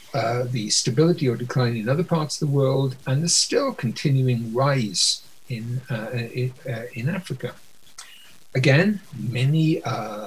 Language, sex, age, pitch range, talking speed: English, male, 60-79, 125-155 Hz, 145 wpm